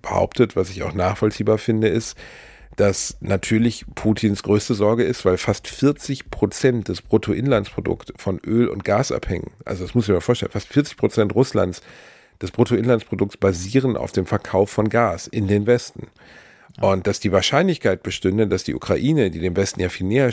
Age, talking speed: 40-59, 175 wpm